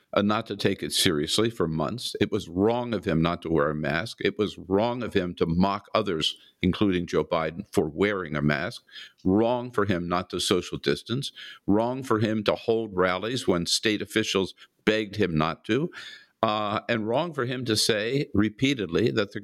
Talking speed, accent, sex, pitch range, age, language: 195 wpm, American, male, 90-115 Hz, 50-69, English